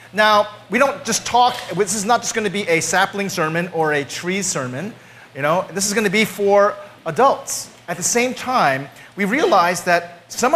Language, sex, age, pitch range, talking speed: English, male, 30-49, 175-255 Hz, 210 wpm